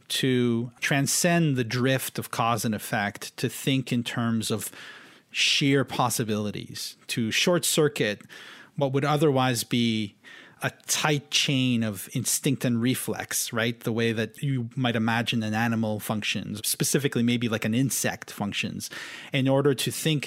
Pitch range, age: 115-140 Hz, 30-49